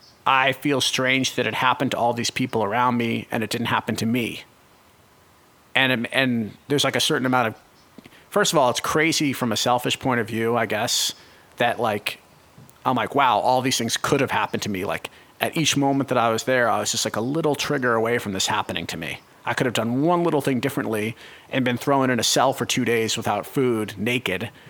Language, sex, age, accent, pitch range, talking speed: English, male, 40-59, American, 115-145 Hz, 225 wpm